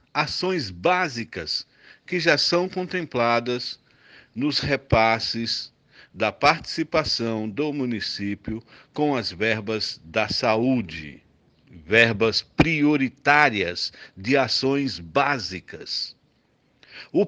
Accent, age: Brazilian, 60-79